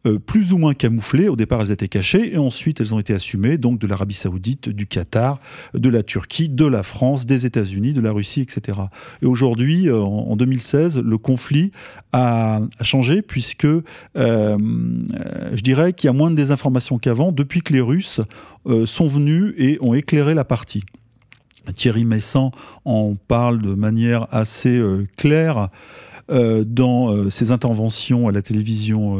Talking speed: 160 wpm